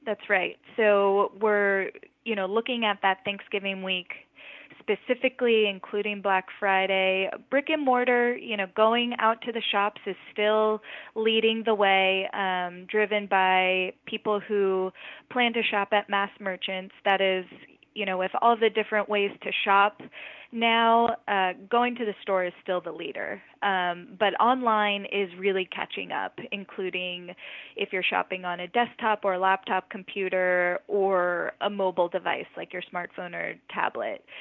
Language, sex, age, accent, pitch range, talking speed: English, female, 20-39, American, 185-220 Hz, 155 wpm